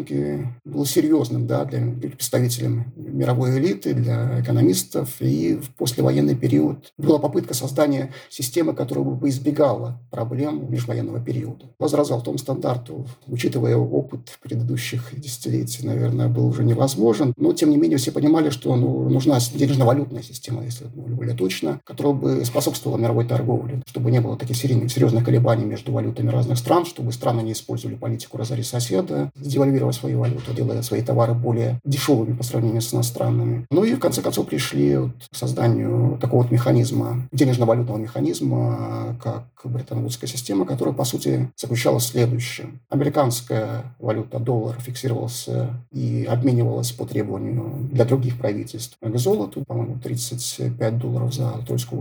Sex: male